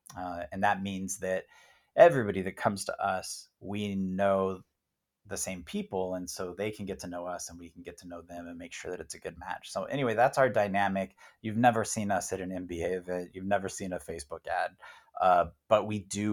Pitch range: 90-100 Hz